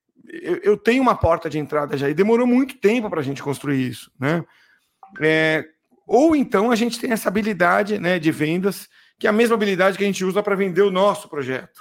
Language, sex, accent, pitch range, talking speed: Portuguese, male, Brazilian, 155-205 Hz, 215 wpm